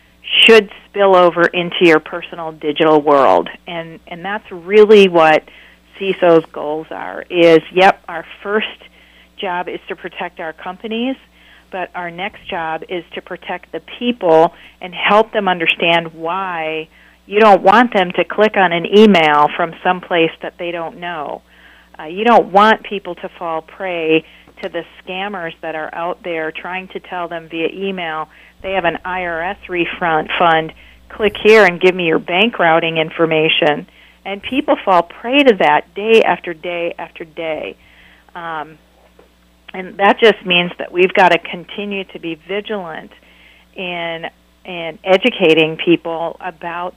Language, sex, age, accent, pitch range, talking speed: English, female, 40-59, American, 160-195 Hz, 150 wpm